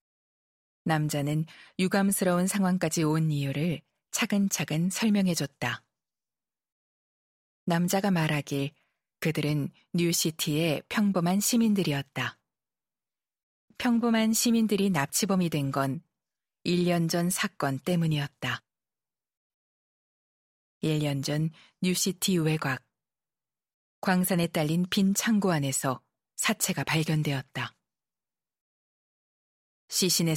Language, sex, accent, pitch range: Korean, female, native, 145-190 Hz